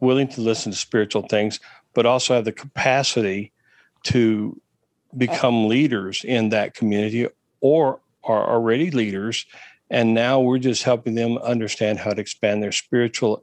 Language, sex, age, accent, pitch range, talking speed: English, male, 50-69, American, 110-130 Hz, 150 wpm